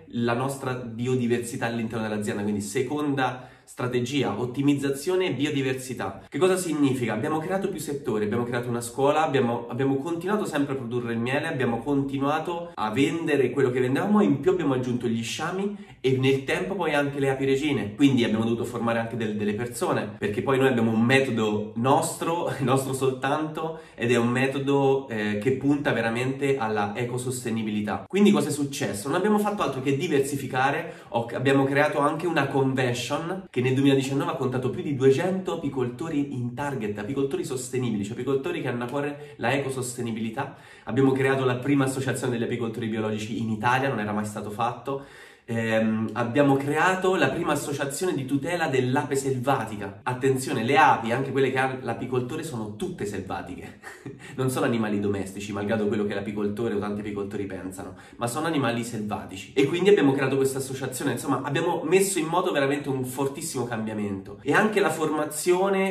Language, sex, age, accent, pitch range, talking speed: Italian, male, 20-39, native, 115-145 Hz, 170 wpm